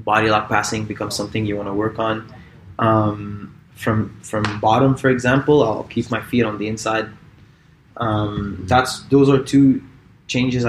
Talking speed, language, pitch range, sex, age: 165 wpm, English, 110-135 Hz, male, 20-39